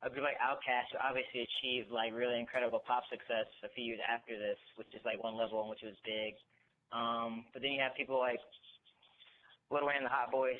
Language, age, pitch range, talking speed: English, 20-39, 110-130 Hz, 220 wpm